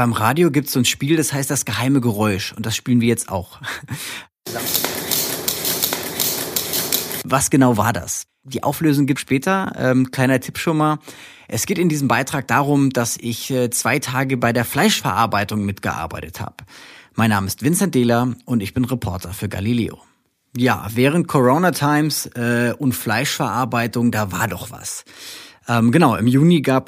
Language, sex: German, male